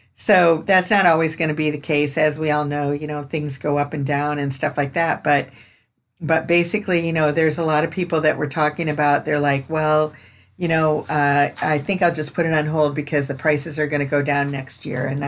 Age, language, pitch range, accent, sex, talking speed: 50-69, English, 145-165 Hz, American, female, 250 wpm